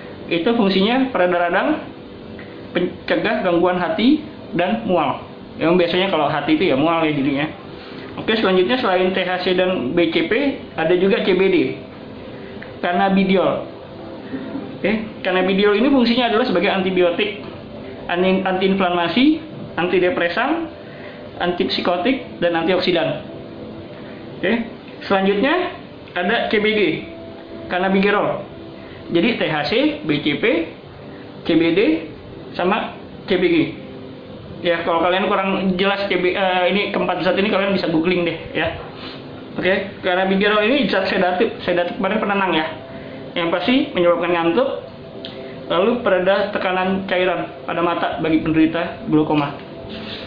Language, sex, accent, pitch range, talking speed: Indonesian, male, native, 170-205 Hz, 110 wpm